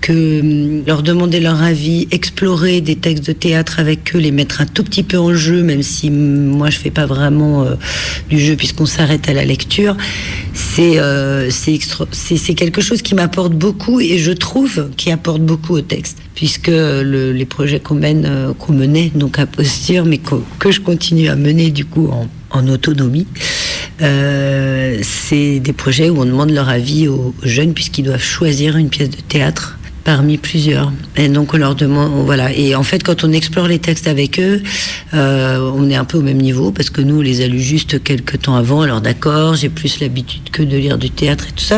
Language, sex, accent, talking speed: French, female, French, 210 wpm